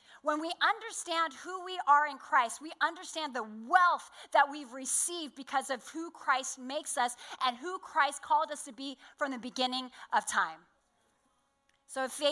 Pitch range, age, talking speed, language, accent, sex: 225-285 Hz, 30-49, 170 wpm, English, American, female